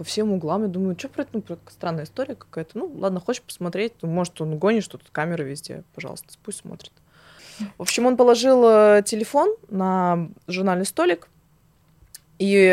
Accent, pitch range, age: native, 170-225 Hz, 20-39